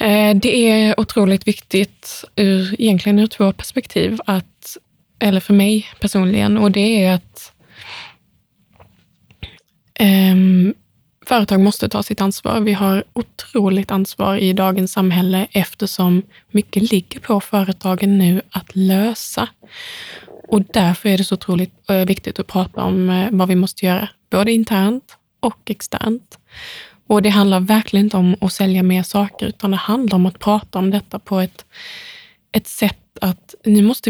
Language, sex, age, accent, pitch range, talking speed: Swedish, female, 20-39, native, 190-220 Hz, 140 wpm